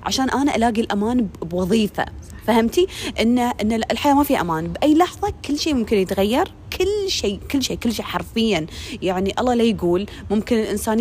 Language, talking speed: Arabic, 170 wpm